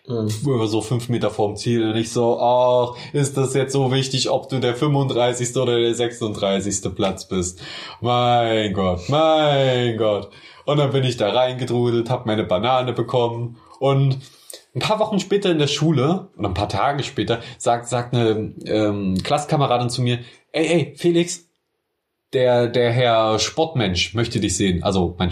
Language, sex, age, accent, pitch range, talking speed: German, male, 20-39, German, 110-145 Hz, 165 wpm